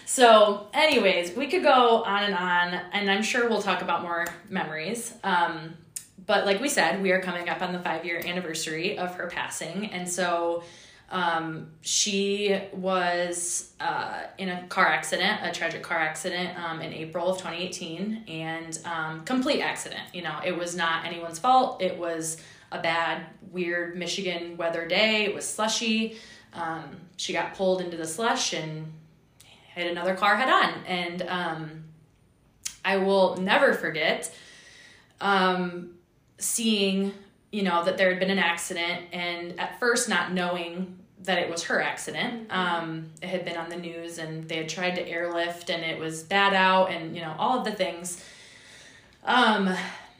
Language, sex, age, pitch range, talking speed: English, female, 20-39, 170-195 Hz, 165 wpm